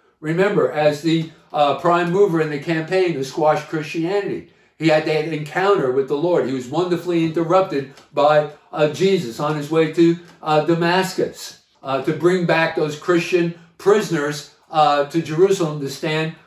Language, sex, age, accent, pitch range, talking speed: English, male, 50-69, American, 160-195 Hz, 160 wpm